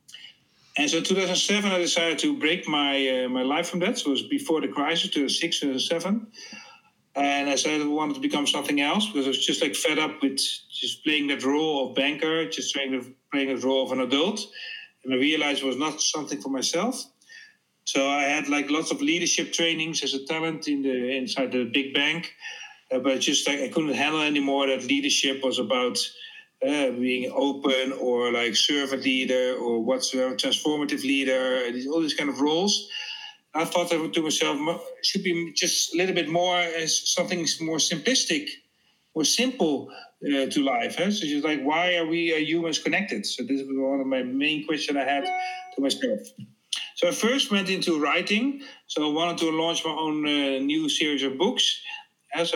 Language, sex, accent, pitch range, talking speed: English, male, Dutch, 135-190 Hz, 200 wpm